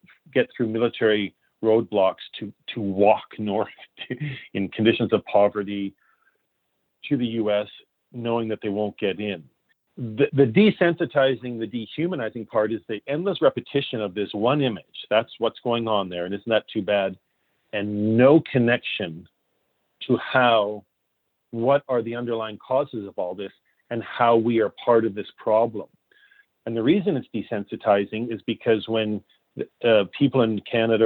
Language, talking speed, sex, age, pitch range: English, 155 wpm, male, 40-59, 110-130 Hz